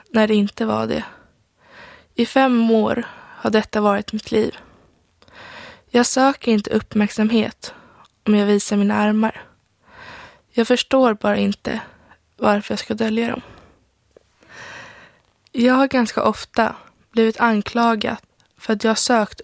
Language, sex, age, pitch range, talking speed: Swedish, female, 20-39, 215-245 Hz, 125 wpm